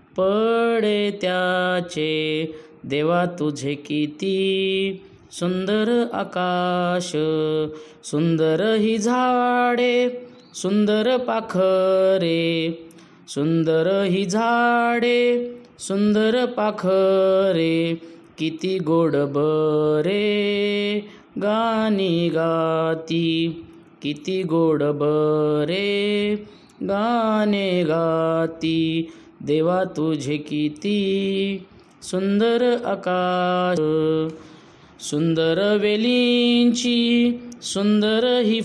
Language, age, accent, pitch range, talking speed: Marathi, 20-39, native, 160-210 Hz, 55 wpm